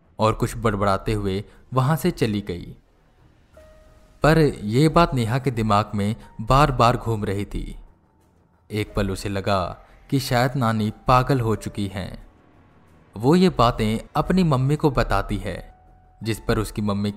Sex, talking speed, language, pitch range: male, 150 wpm, Hindi, 100-135 Hz